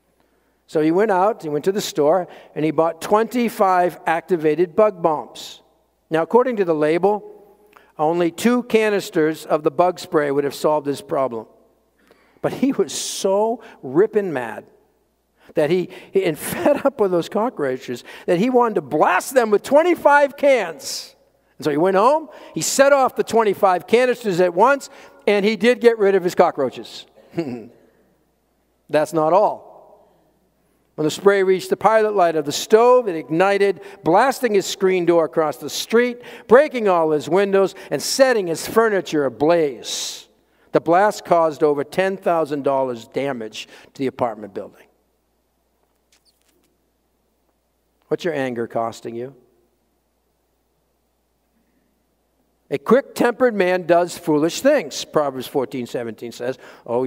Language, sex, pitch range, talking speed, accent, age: English, male, 150-220 Hz, 140 wpm, American, 50-69